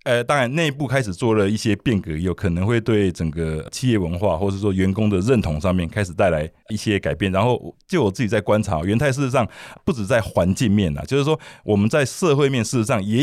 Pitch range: 90-120 Hz